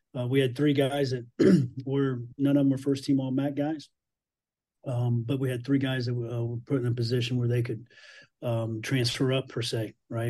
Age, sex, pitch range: 40-59, male, 115-130 Hz